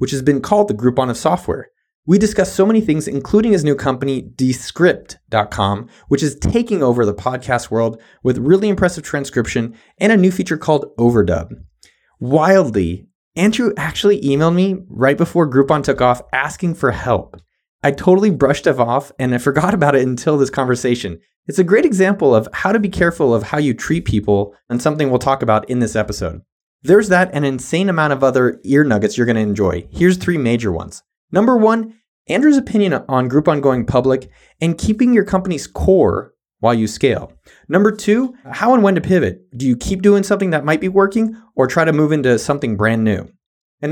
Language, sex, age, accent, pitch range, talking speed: English, male, 20-39, American, 120-190 Hz, 195 wpm